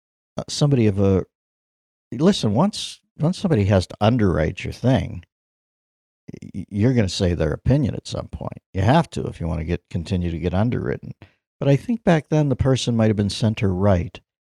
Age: 60-79